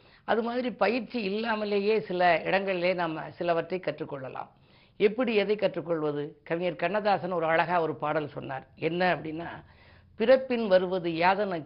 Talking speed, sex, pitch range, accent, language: 125 wpm, female, 160-200 Hz, native, Tamil